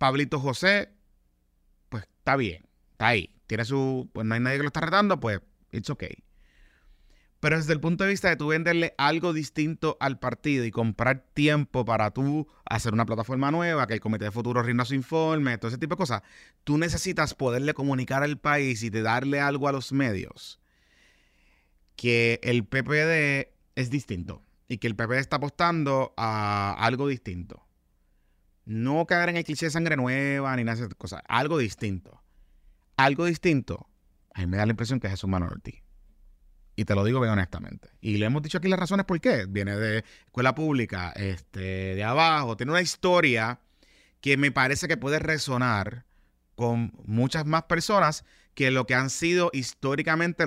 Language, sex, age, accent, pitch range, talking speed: Spanish, male, 30-49, Venezuelan, 105-150 Hz, 180 wpm